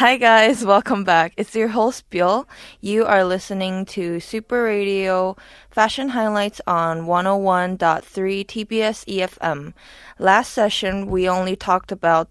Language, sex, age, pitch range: Korean, female, 20-39, 170-210 Hz